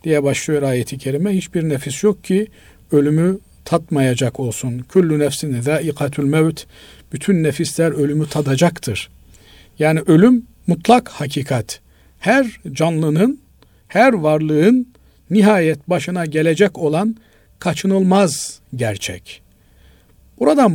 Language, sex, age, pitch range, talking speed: Turkish, male, 50-69, 125-175 Hz, 100 wpm